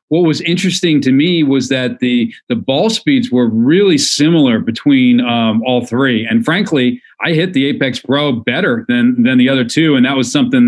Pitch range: 120-160 Hz